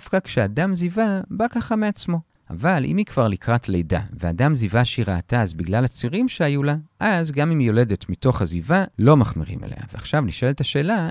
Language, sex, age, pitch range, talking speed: Hebrew, male, 40-59, 110-170 Hz, 185 wpm